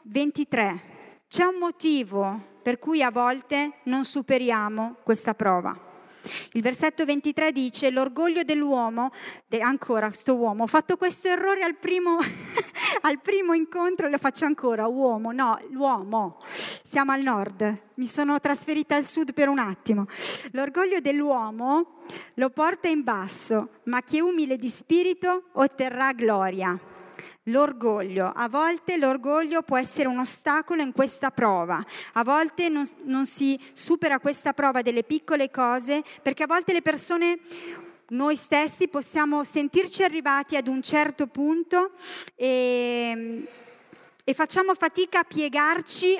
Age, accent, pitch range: 30-49, native, 245-320 Hz